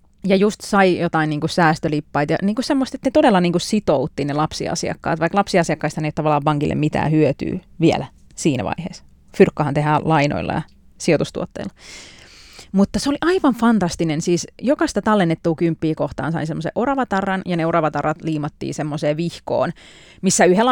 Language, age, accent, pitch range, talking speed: Finnish, 30-49, native, 155-215 Hz, 150 wpm